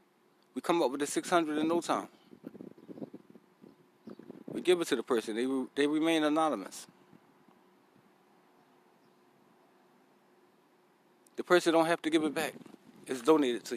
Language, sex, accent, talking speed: English, male, American, 135 wpm